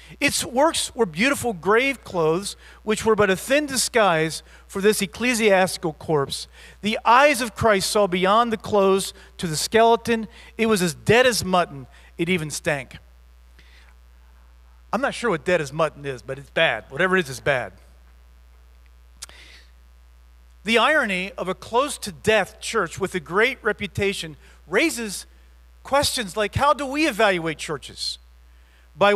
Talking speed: 150 wpm